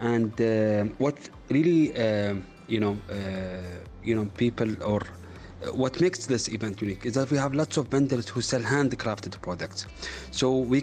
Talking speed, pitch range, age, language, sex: 170 wpm, 100-125 Hz, 30-49, English, male